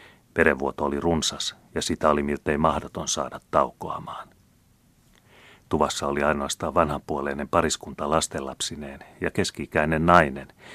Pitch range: 70-85 Hz